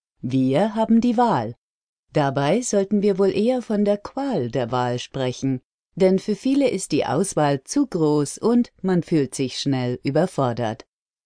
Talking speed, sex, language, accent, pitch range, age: 155 wpm, female, German, German, 135-200 Hz, 40-59